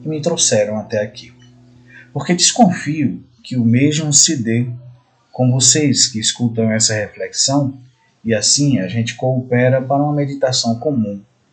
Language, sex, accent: Portuguese, male, Brazilian